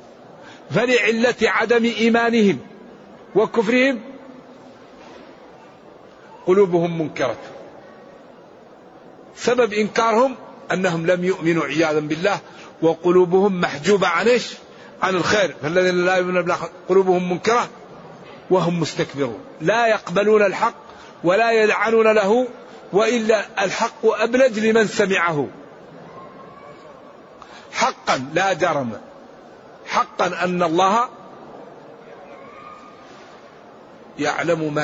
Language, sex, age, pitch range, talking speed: Arabic, male, 50-69, 165-220 Hz, 75 wpm